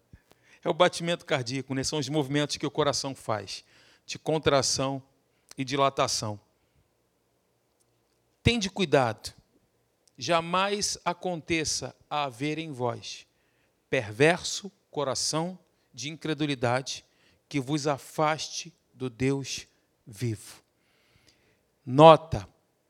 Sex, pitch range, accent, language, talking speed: male, 130-175 Hz, Brazilian, Portuguese, 90 wpm